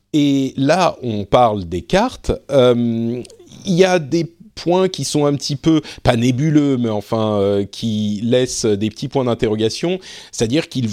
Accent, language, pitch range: French, French, 100-130 Hz